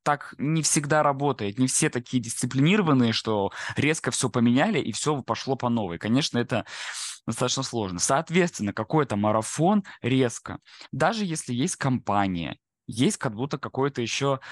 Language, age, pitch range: Russian, 20-39, 115-145 Hz